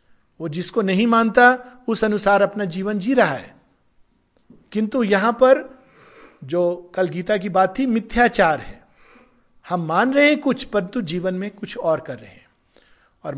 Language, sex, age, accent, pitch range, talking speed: Hindi, male, 50-69, native, 160-210 Hz, 160 wpm